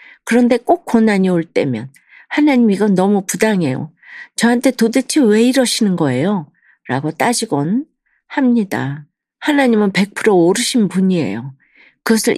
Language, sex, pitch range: Korean, female, 175-235 Hz